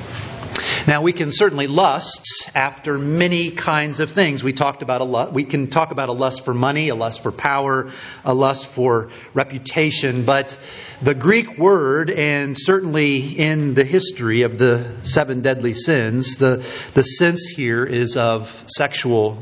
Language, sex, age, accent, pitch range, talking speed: English, male, 40-59, American, 125-155 Hz, 160 wpm